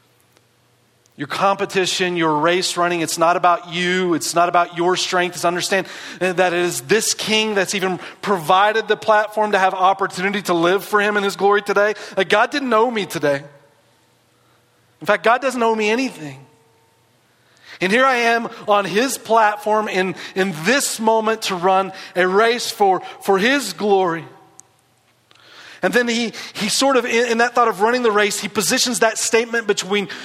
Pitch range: 150-220 Hz